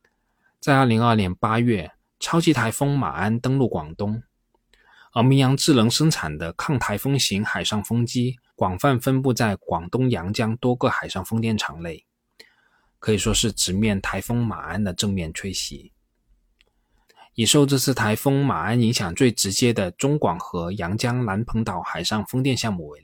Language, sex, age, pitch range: Chinese, male, 20-39, 100-130 Hz